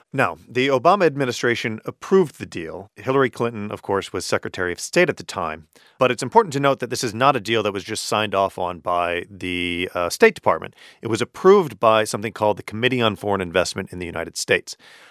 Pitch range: 100-135 Hz